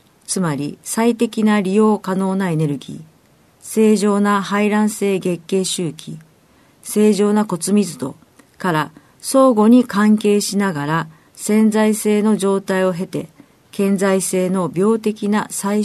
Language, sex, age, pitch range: Japanese, female, 40-59, 165-215 Hz